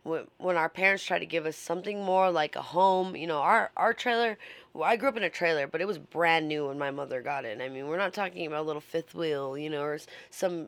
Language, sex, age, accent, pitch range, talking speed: English, female, 20-39, American, 150-190 Hz, 275 wpm